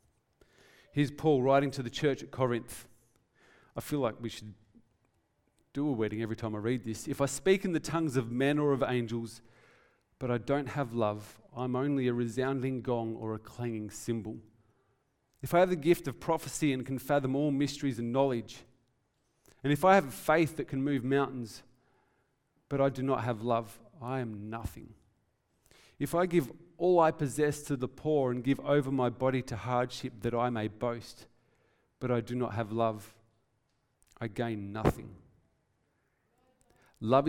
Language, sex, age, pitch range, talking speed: English, male, 40-59, 115-140 Hz, 175 wpm